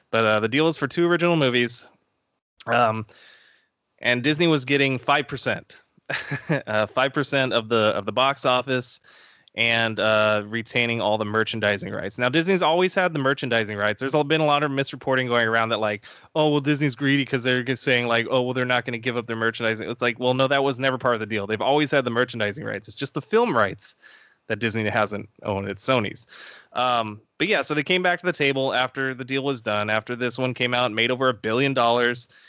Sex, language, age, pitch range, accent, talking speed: male, English, 20-39, 115-140 Hz, American, 220 wpm